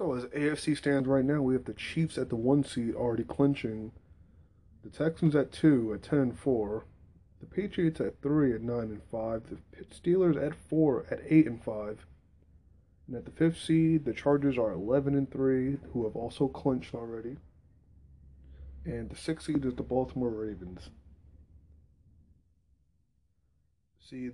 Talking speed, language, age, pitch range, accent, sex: 160 wpm, English, 20-39, 85-135 Hz, American, male